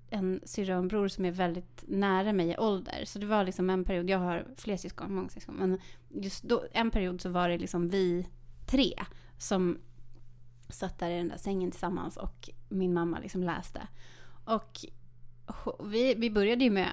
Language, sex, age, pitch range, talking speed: Swedish, female, 30-49, 160-210 Hz, 180 wpm